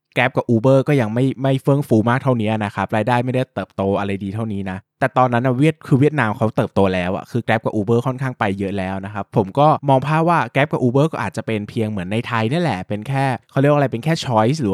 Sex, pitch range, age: male, 100-130 Hz, 20-39